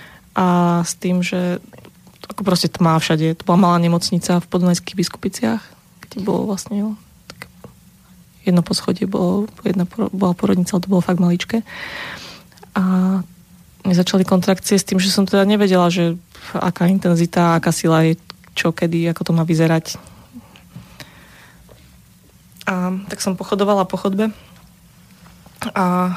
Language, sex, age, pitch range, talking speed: Slovak, female, 20-39, 180-200 Hz, 140 wpm